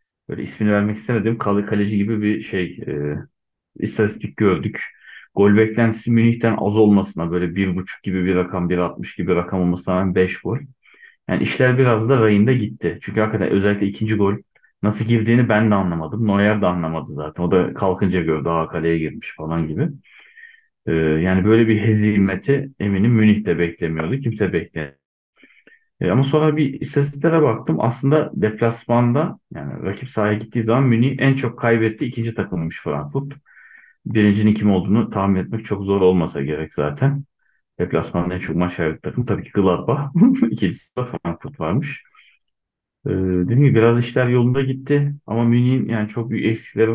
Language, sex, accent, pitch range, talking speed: Turkish, male, native, 90-120 Hz, 160 wpm